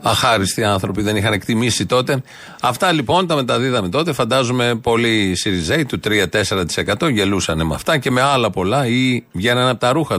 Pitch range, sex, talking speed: 105-150 Hz, male, 165 wpm